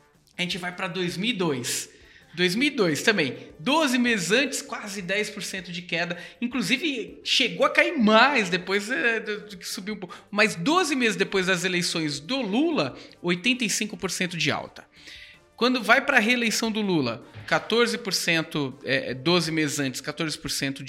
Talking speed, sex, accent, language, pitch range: 145 wpm, male, Brazilian, Portuguese, 145-215 Hz